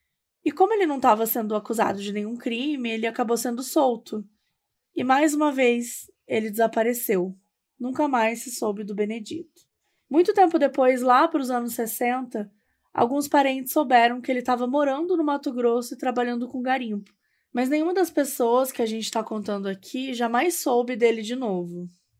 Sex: female